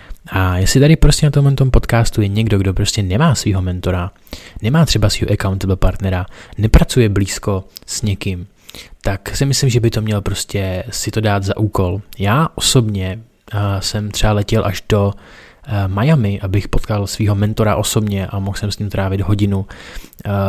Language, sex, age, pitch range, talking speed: Czech, male, 20-39, 100-115 Hz, 175 wpm